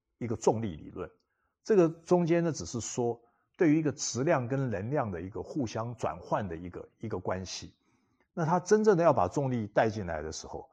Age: 60-79